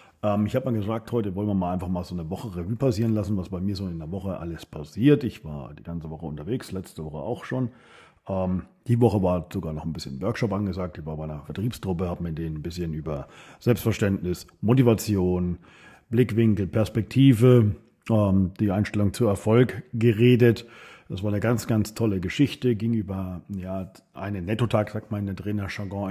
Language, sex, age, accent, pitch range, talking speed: German, male, 40-59, German, 95-115 Hz, 185 wpm